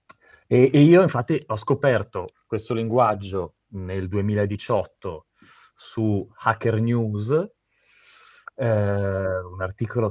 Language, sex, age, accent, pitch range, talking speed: Italian, male, 30-49, native, 105-145 Hz, 90 wpm